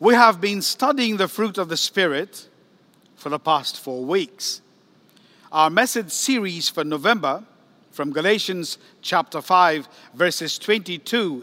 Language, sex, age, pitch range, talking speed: English, male, 50-69, 160-215 Hz, 130 wpm